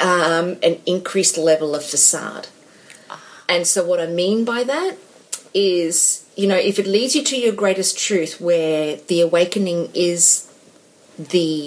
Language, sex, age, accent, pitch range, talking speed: English, female, 30-49, Australian, 160-200 Hz, 150 wpm